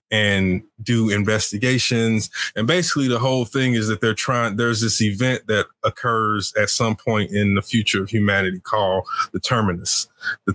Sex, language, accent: male, English, American